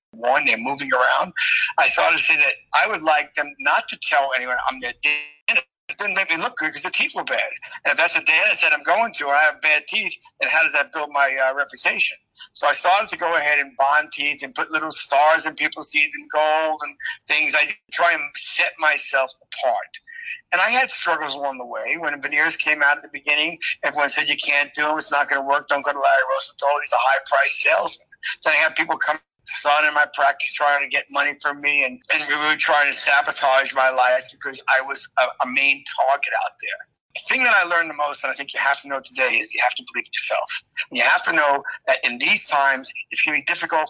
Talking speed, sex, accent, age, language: 250 wpm, male, American, 60-79, English